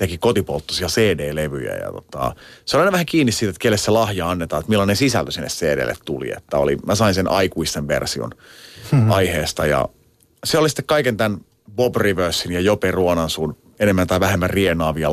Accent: native